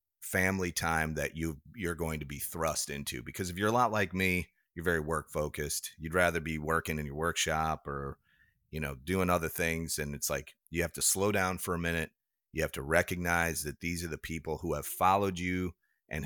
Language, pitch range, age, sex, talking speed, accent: English, 80-95 Hz, 30-49, male, 220 wpm, American